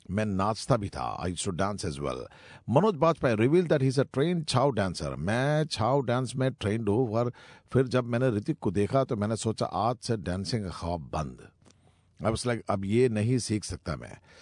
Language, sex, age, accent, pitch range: Japanese, male, 50-69, Indian, 105-145 Hz